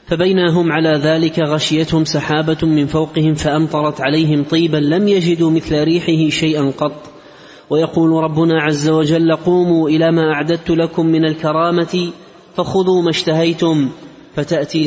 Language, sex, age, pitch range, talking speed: Arabic, male, 30-49, 155-170 Hz, 125 wpm